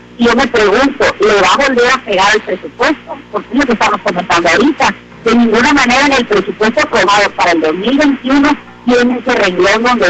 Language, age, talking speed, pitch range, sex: Spanish, 40-59, 195 wpm, 200-255 Hz, female